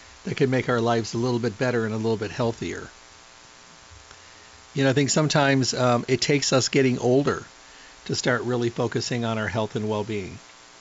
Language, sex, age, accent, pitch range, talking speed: English, male, 50-69, American, 115-145 Hz, 195 wpm